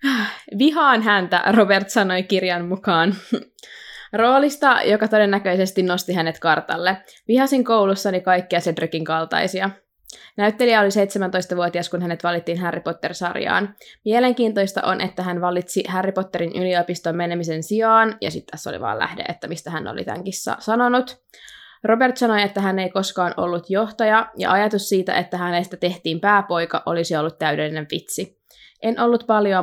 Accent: native